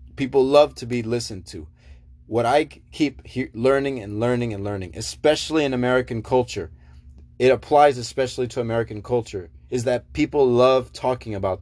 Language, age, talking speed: English, 20-39, 160 wpm